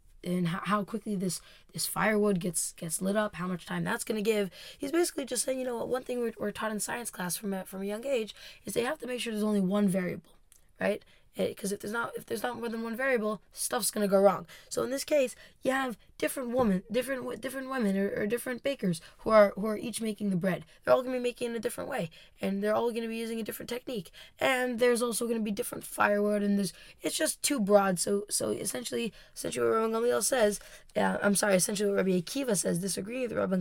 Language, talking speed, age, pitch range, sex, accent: English, 245 wpm, 20-39, 190-235 Hz, female, American